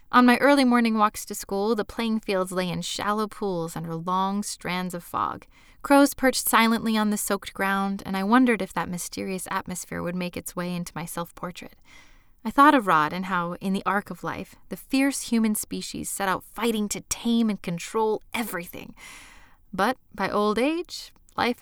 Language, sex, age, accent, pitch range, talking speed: English, female, 20-39, American, 175-225 Hz, 190 wpm